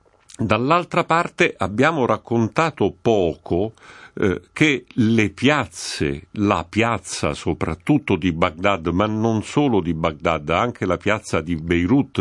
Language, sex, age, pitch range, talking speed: Italian, male, 50-69, 90-125 Hz, 120 wpm